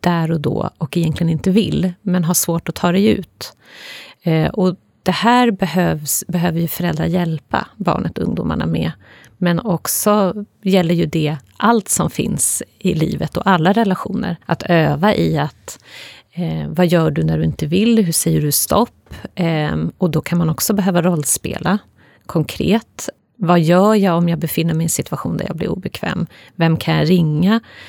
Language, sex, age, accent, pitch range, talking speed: Swedish, female, 30-49, native, 160-195 Hz, 180 wpm